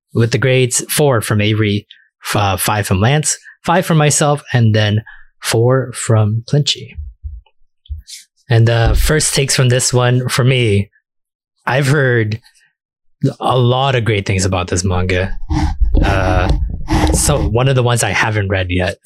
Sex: male